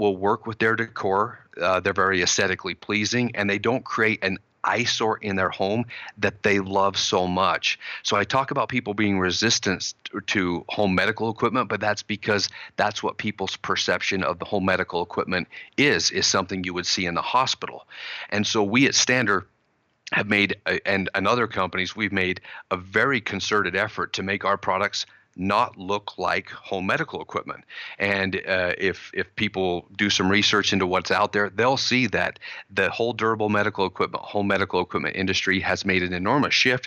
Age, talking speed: 40-59, 185 wpm